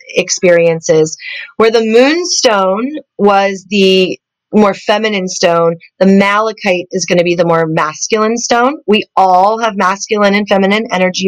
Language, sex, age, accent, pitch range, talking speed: English, female, 30-49, American, 190-245 Hz, 140 wpm